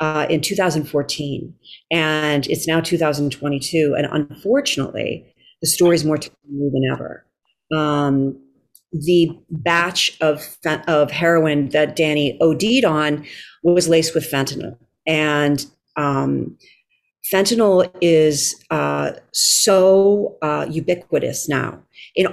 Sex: female